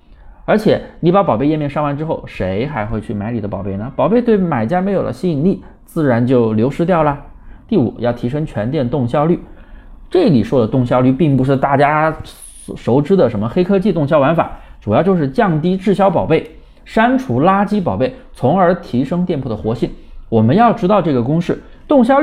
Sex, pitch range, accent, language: male, 120-185 Hz, native, Chinese